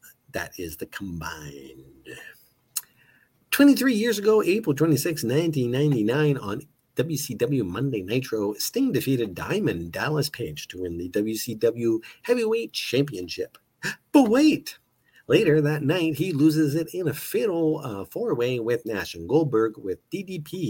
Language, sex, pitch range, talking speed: English, male, 115-175 Hz, 130 wpm